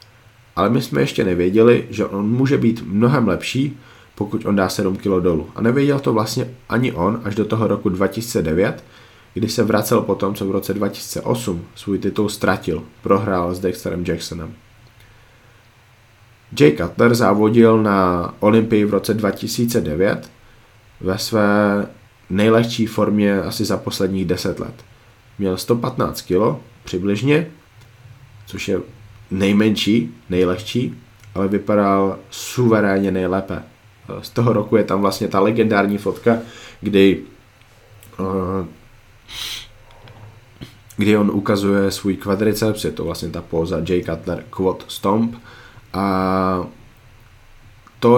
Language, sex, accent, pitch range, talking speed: Czech, male, native, 95-115 Hz, 125 wpm